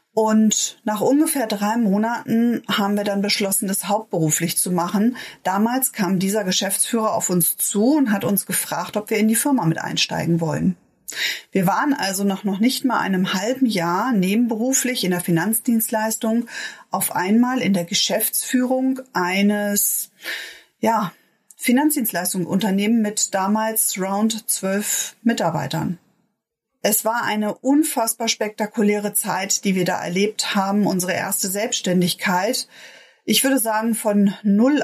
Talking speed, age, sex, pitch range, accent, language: 135 wpm, 30-49, female, 185-230 Hz, German, German